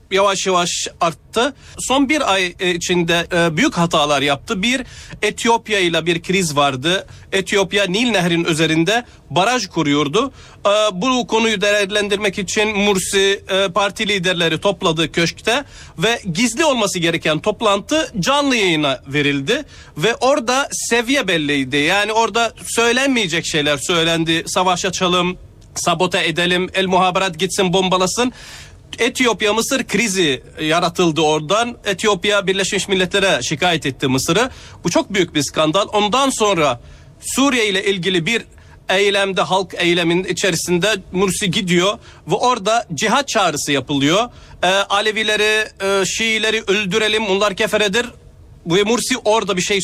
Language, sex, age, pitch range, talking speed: Turkish, male, 40-59, 175-220 Hz, 120 wpm